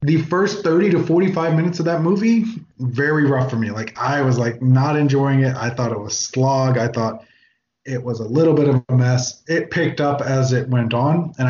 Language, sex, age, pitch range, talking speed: English, male, 20-39, 125-145 Hz, 225 wpm